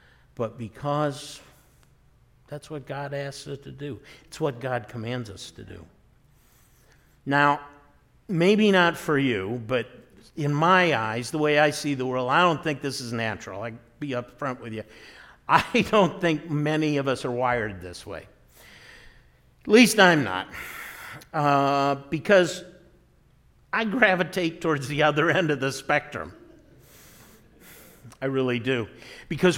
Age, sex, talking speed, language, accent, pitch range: 50-69, male, 145 wpm, English, American, 130-170 Hz